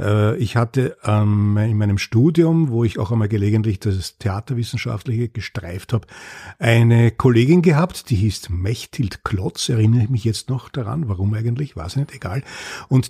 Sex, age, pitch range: male, 50-69, 105-130 Hz